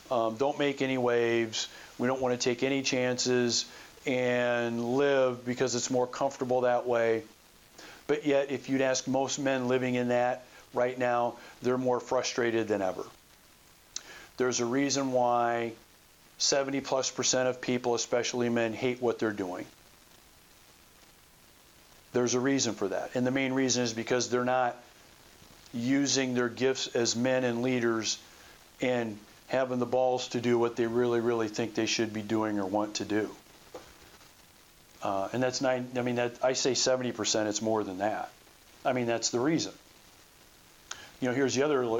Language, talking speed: English, 165 wpm